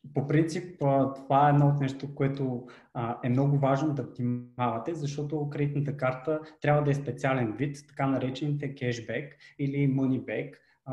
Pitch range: 125-155 Hz